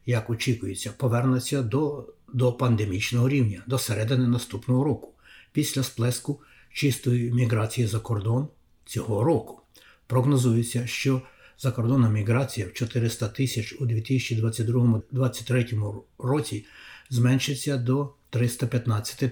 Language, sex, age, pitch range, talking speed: Ukrainian, male, 60-79, 115-135 Hz, 105 wpm